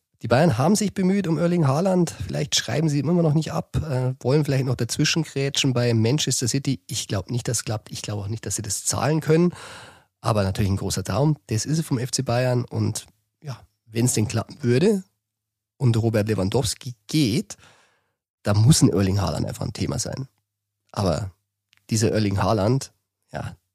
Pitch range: 105-135 Hz